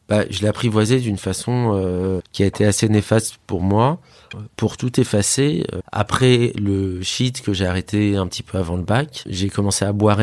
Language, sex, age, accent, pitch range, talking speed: French, male, 30-49, French, 95-115 Hz, 195 wpm